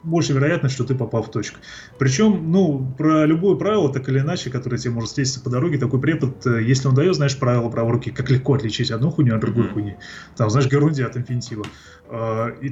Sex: male